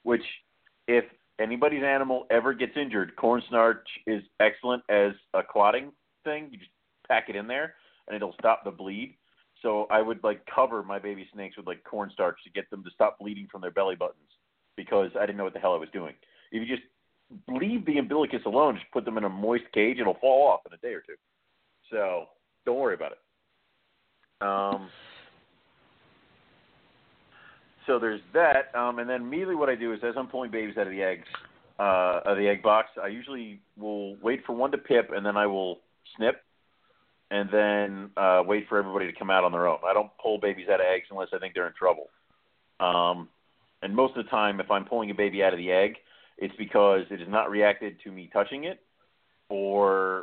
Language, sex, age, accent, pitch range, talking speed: English, male, 40-59, American, 100-120 Hz, 205 wpm